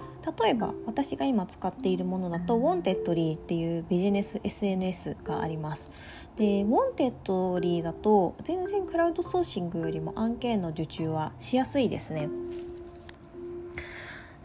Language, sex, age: Japanese, female, 20-39